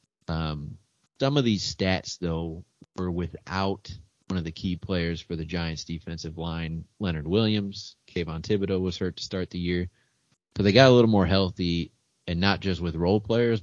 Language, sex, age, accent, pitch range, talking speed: English, male, 30-49, American, 80-100 Hz, 180 wpm